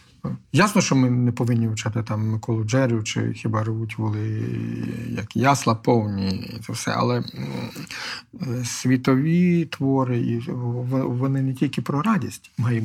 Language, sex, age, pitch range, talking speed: Ukrainian, male, 50-69, 120-160 Hz, 130 wpm